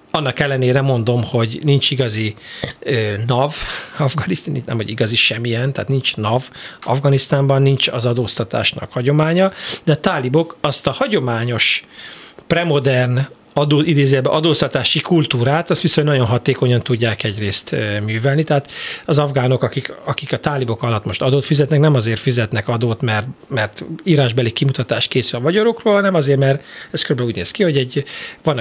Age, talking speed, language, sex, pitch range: 40-59, 150 wpm, Hungarian, male, 120-155 Hz